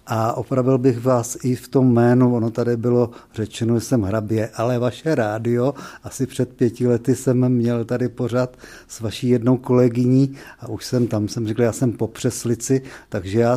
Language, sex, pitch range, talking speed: Czech, male, 120-140 Hz, 185 wpm